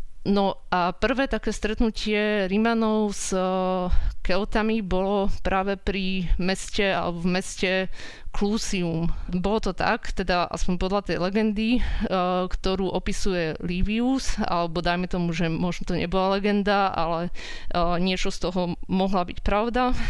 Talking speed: 125 wpm